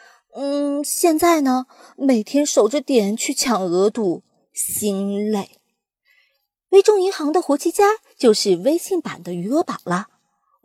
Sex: female